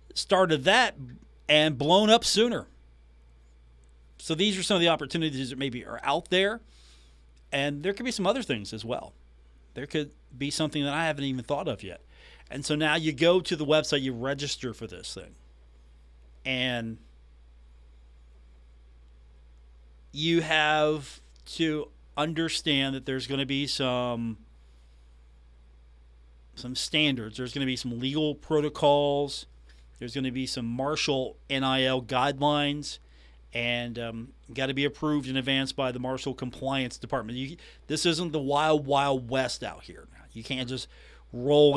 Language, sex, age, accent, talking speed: English, male, 40-59, American, 150 wpm